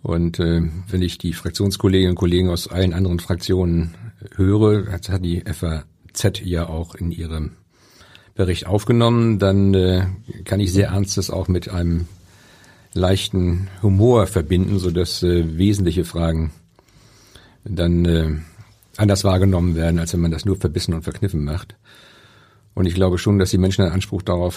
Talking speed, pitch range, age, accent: 160 wpm, 85-100 Hz, 50-69, German